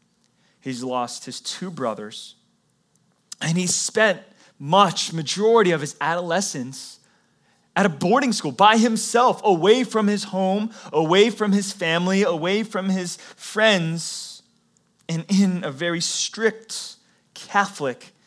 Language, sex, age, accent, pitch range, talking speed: English, male, 30-49, American, 150-205 Hz, 120 wpm